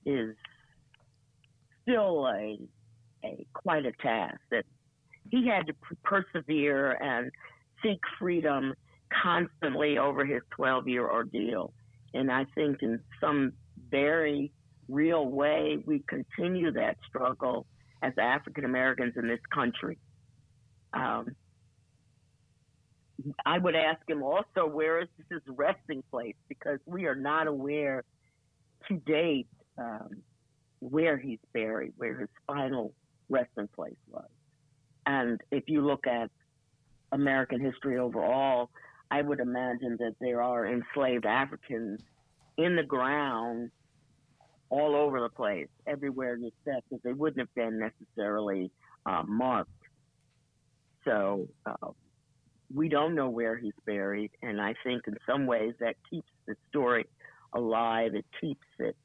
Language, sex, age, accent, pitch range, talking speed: English, female, 50-69, American, 120-150 Hz, 125 wpm